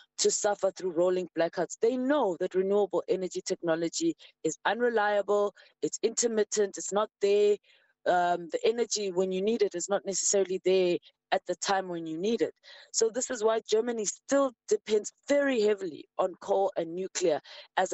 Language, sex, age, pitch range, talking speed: English, female, 20-39, 185-250 Hz, 165 wpm